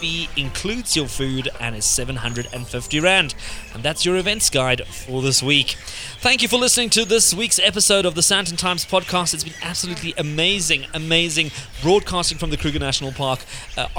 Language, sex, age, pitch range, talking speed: English, male, 20-39, 135-180 Hz, 170 wpm